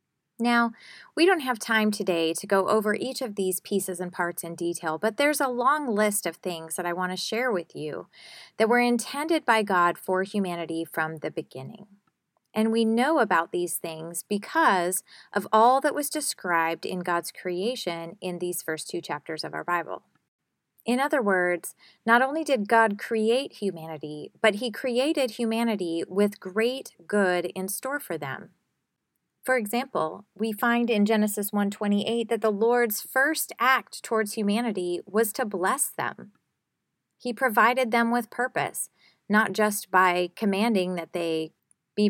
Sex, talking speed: female, 160 wpm